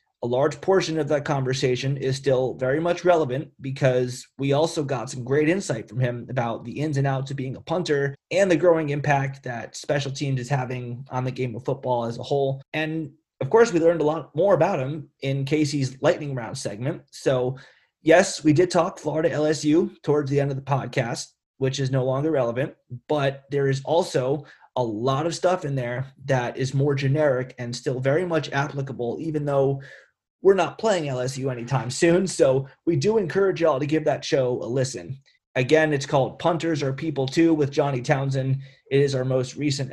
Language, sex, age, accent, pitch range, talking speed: English, male, 30-49, American, 130-155 Hz, 200 wpm